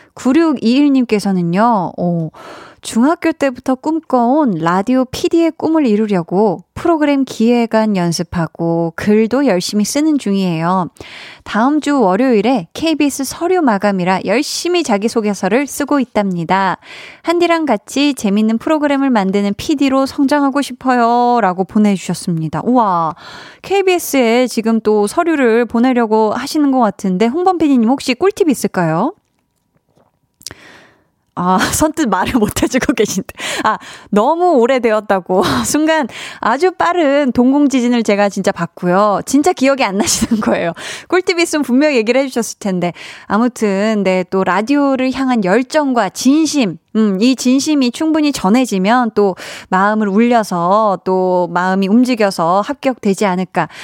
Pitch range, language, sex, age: 195-280 Hz, Korean, female, 20-39